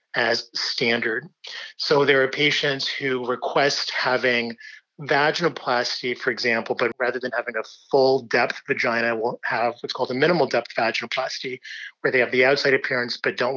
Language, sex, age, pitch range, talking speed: English, male, 30-49, 120-155 Hz, 150 wpm